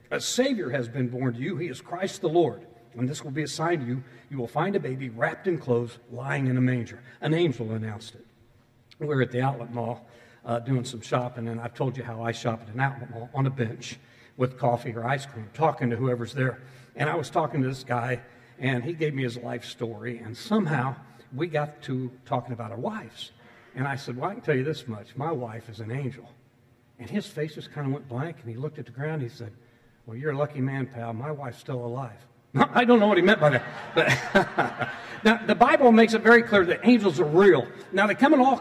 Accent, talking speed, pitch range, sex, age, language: American, 245 wpm, 120-160 Hz, male, 60-79, English